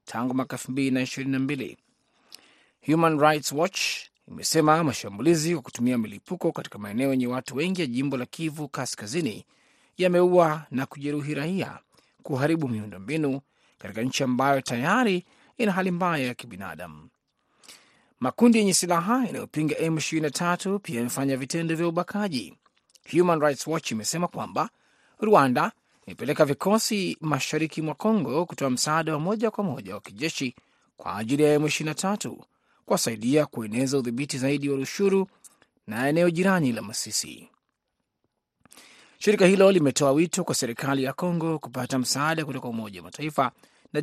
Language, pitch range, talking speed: Swahili, 130-175 Hz, 130 wpm